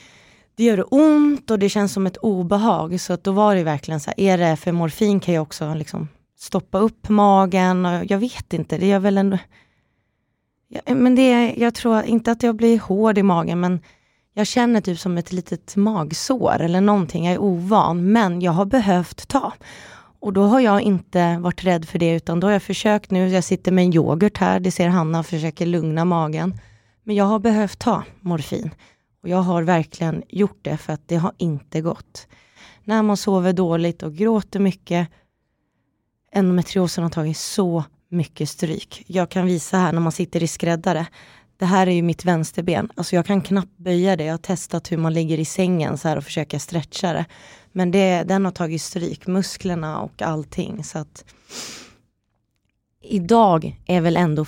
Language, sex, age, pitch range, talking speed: Swedish, female, 20-39, 165-200 Hz, 190 wpm